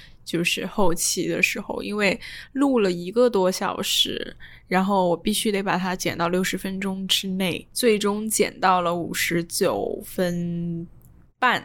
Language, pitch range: Chinese, 180-220 Hz